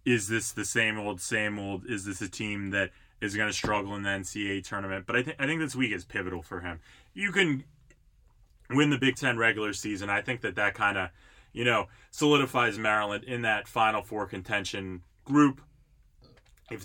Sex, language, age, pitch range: male, English, 30-49, 95-120 Hz